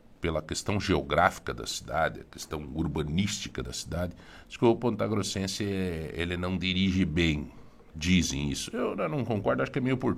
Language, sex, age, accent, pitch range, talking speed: Portuguese, male, 60-79, Brazilian, 75-100 Hz, 170 wpm